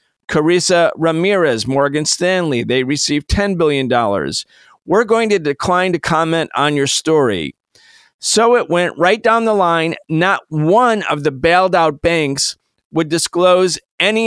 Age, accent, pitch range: 50-69, American, 140-180 Hz